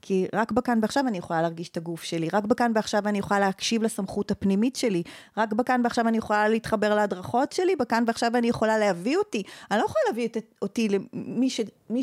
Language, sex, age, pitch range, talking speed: Hebrew, female, 30-49, 195-260 Hz, 205 wpm